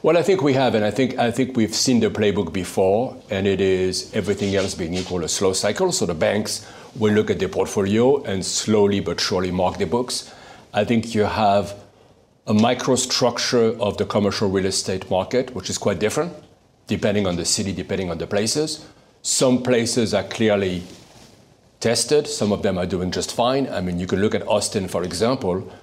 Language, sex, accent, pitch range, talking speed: English, male, French, 95-115 Hz, 195 wpm